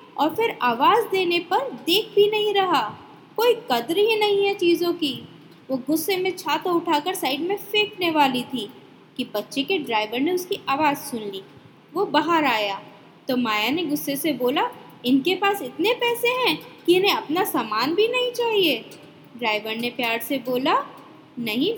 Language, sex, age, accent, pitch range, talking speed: Hindi, female, 20-39, native, 250-380 Hz, 170 wpm